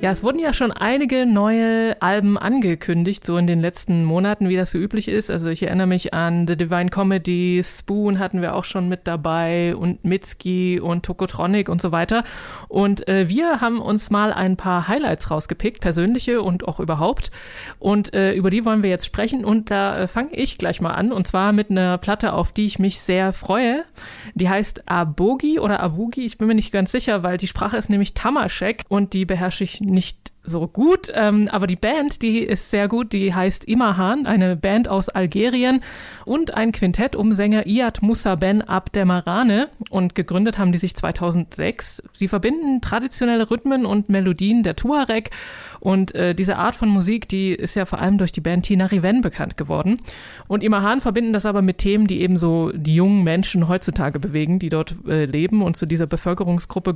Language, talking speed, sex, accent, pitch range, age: German, 195 wpm, female, German, 180-220 Hz, 20-39